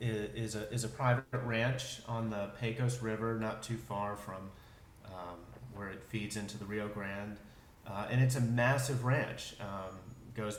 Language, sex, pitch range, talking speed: English, male, 105-120 Hz, 170 wpm